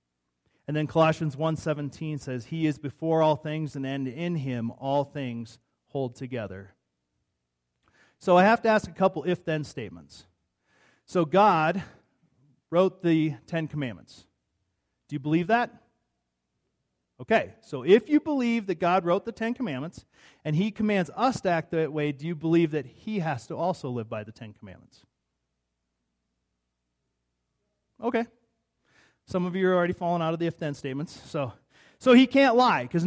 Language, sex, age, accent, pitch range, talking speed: English, male, 40-59, American, 130-180 Hz, 155 wpm